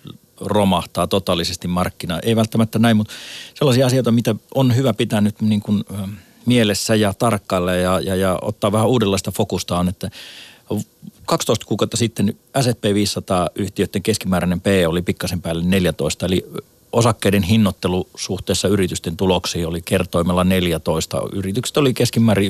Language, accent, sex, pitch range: Finnish, native, male, 90-115 Hz